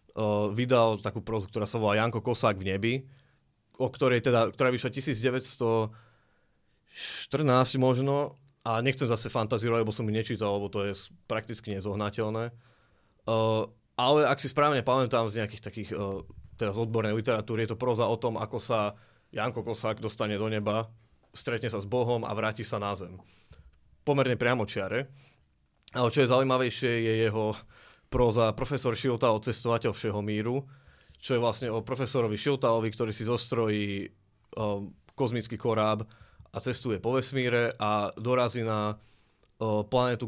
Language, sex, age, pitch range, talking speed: Slovak, male, 20-39, 105-125 Hz, 145 wpm